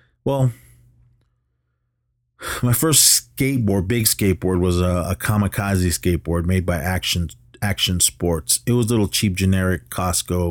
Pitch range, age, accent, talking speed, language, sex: 90-110 Hz, 30-49, American, 130 wpm, English, male